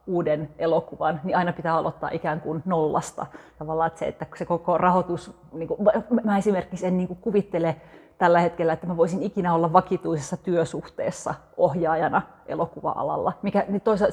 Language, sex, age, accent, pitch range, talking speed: Finnish, female, 30-49, native, 165-185 Hz, 155 wpm